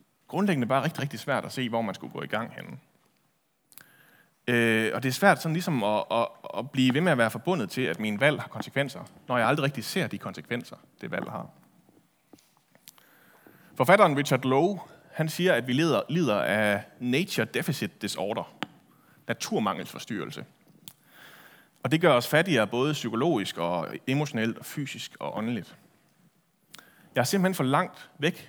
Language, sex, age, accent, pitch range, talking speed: Danish, male, 30-49, native, 125-175 Hz, 165 wpm